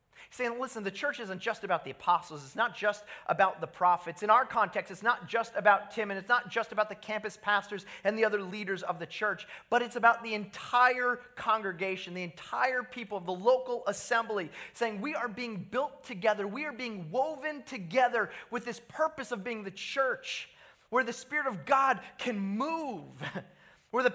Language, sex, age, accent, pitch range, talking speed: English, male, 30-49, American, 175-245 Hz, 195 wpm